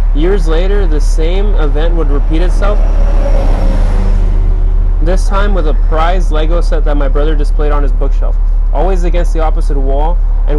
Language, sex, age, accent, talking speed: English, male, 20-39, American, 160 wpm